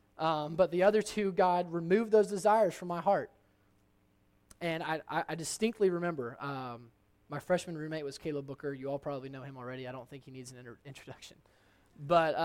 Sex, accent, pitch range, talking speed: male, American, 110-180 Hz, 190 wpm